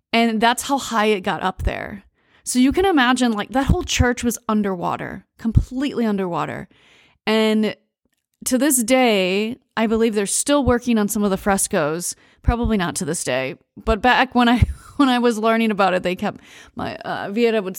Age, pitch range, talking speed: 30-49, 195-240 Hz, 185 wpm